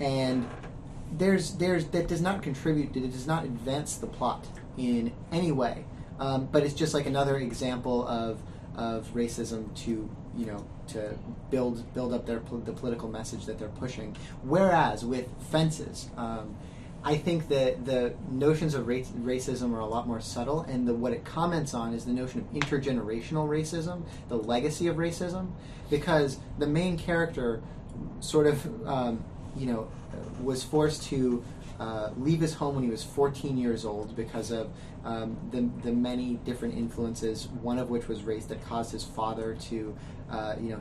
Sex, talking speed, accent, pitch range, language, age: male, 175 wpm, American, 115-145 Hz, English, 30-49